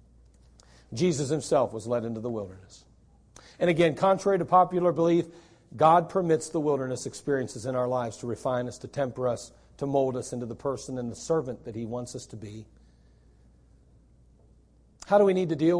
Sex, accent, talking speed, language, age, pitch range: male, American, 180 wpm, English, 40-59, 115-155 Hz